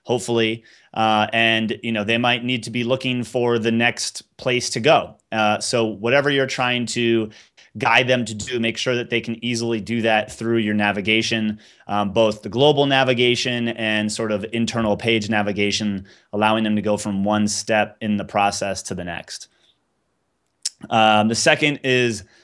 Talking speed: 175 wpm